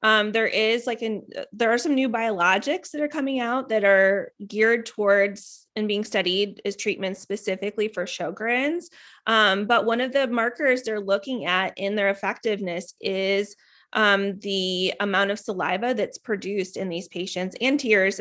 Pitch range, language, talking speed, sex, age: 190-225 Hz, English, 170 wpm, female, 20-39